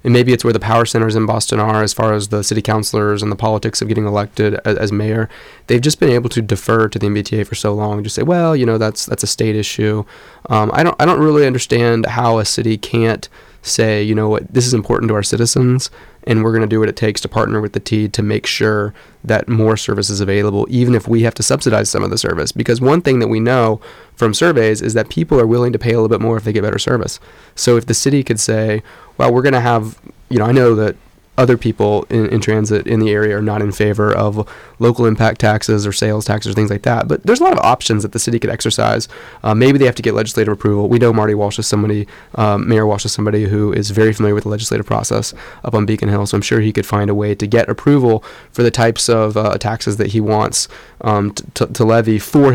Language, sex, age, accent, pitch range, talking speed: English, male, 20-39, American, 105-115 Hz, 265 wpm